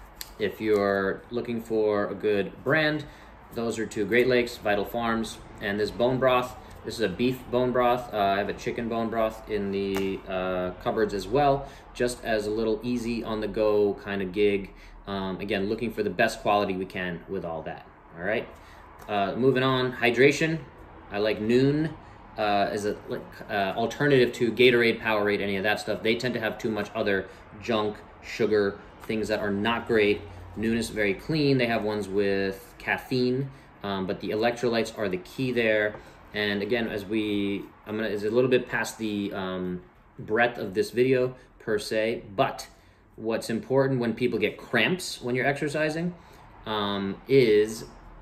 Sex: male